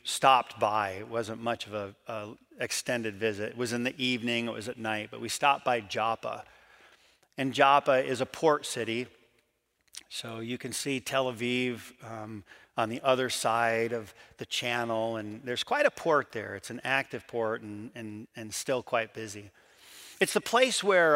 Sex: male